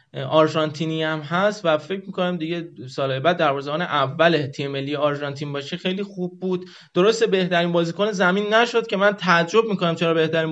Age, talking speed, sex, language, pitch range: 30-49, 165 wpm, male, Persian, 160-210 Hz